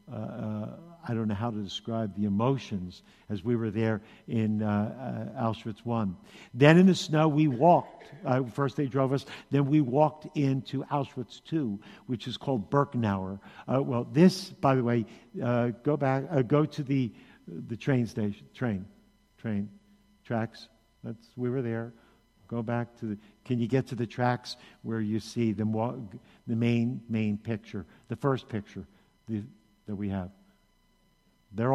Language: English